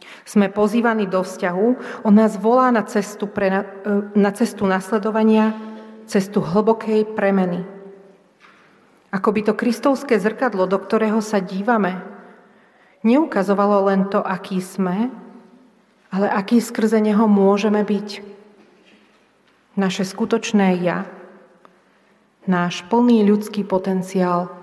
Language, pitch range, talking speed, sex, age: Slovak, 190-220 Hz, 105 wpm, female, 40-59